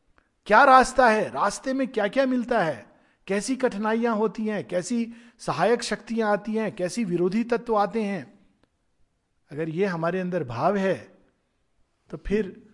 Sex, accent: male, native